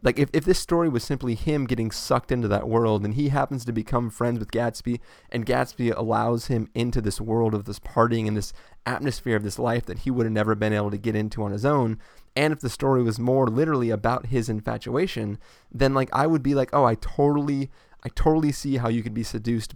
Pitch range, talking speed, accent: 110-130 Hz, 230 wpm, American